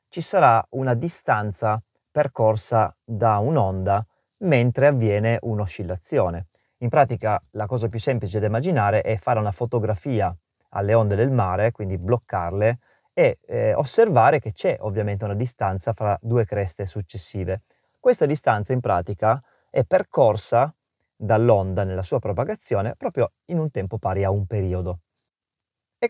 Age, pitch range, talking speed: 30-49, 100-120 Hz, 135 wpm